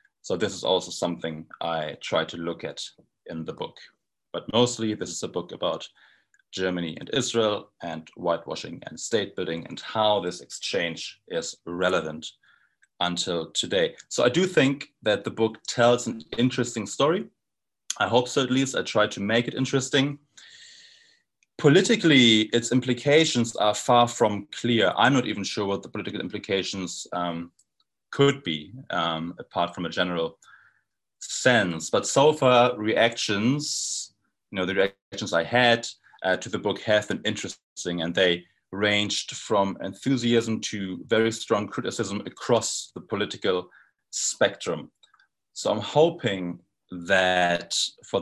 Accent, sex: German, male